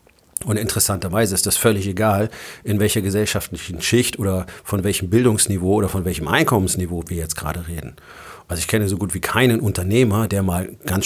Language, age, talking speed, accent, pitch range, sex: German, 40-59, 180 wpm, German, 95-110 Hz, male